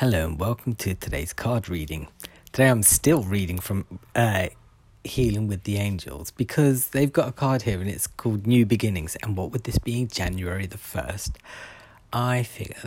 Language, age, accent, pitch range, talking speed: English, 30-49, British, 95-125 Hz, 175 wpm